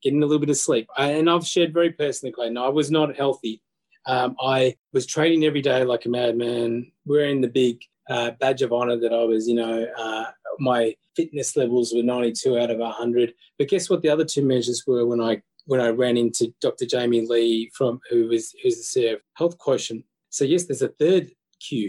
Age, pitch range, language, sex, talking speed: 20-39, 120-160 Hz, English, male, 220 wpm